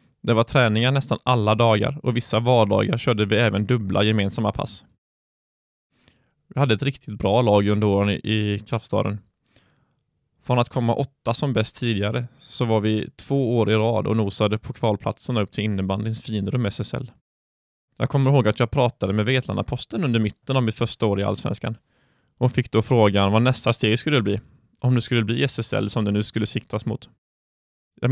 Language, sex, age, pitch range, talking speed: Swedish, male, 20-39, 105-125 Hz, 185 wpm